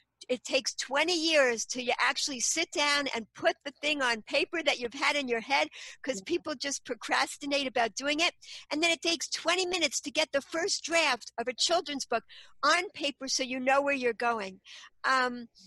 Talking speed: 200 wpm